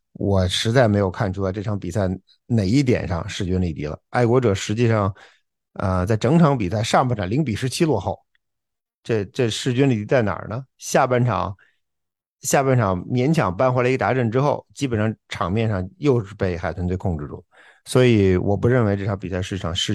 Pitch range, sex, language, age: 95-130 Hz, male, Chinese, 50-69